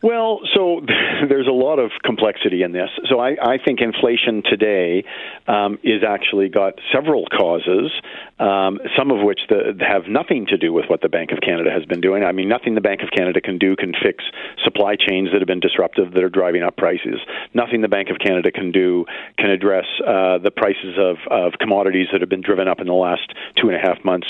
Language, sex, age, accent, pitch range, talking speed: English, male, 50-69, American, 95-140 Hz, 220 wpm